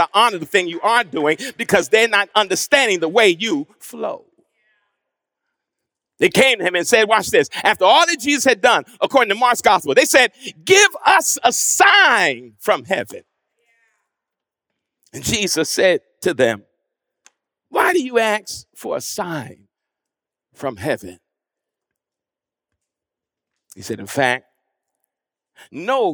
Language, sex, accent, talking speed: English, male, American, 135 wpm